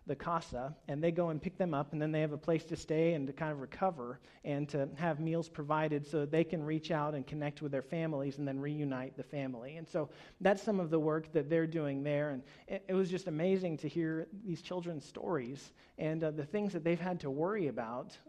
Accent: American